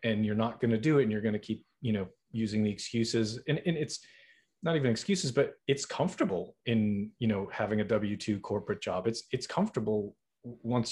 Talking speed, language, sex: 210 wpm, English, male